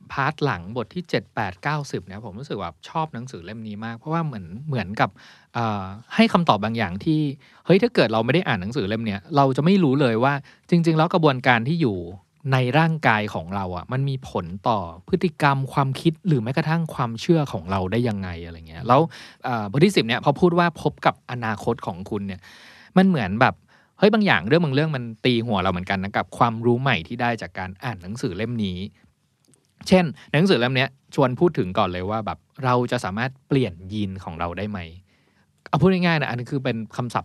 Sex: male